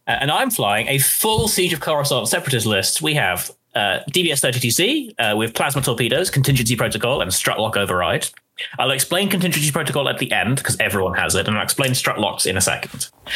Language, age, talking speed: English, 30-49, 195 wpm